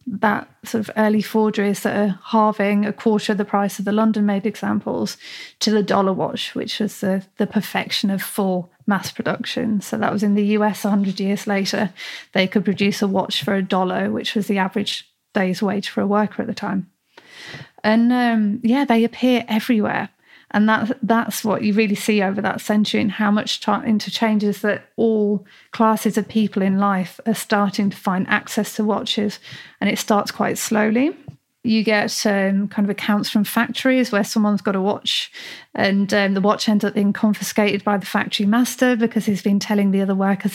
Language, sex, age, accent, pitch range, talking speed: English, female, 30-49, British, 200-220 Hz, 195 wpm